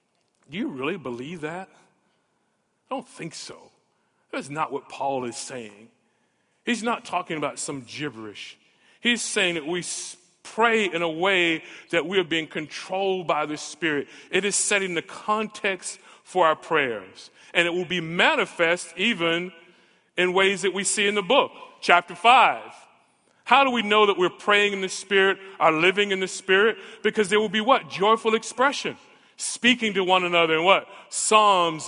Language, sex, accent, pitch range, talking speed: English, male, American, 170-210 Hz, 170 wpm